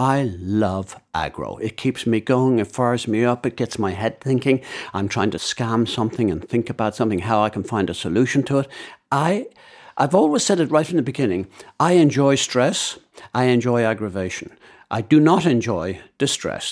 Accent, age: British, 60-79